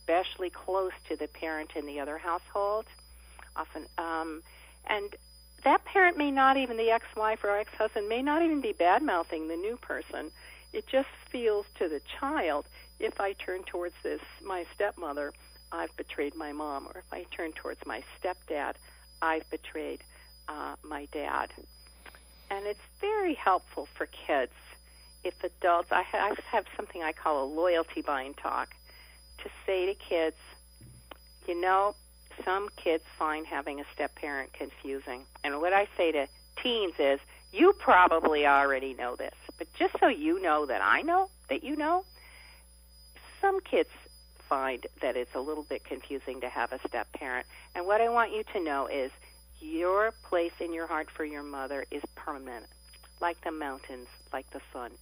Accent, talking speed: American, 165 wpm